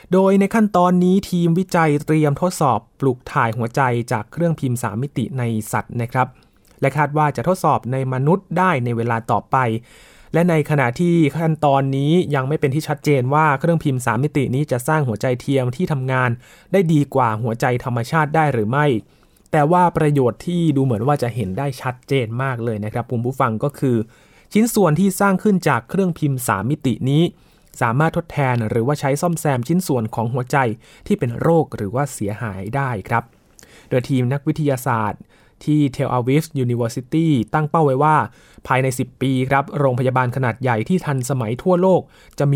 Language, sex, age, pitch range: Thai, male, 20-39, 125-155 Hz